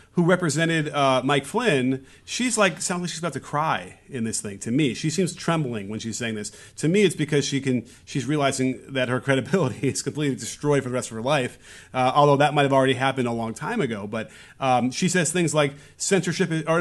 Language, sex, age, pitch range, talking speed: English, male, 30-49, 125-160 Hz, 230 wpm